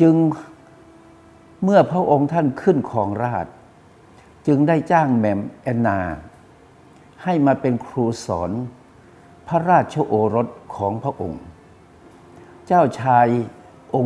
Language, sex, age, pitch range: Thai, male, 60-79, 100-140 Hz